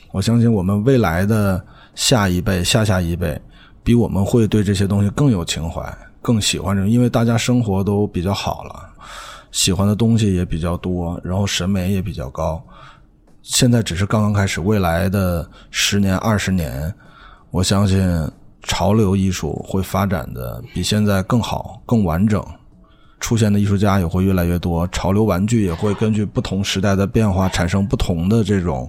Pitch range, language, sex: 95-115 Hz, Chinese, male